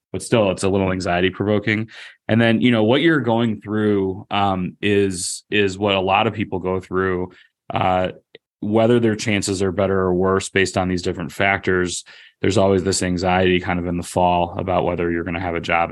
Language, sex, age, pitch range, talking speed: English, male, 20-39, 90-110 Hz, 205 wpm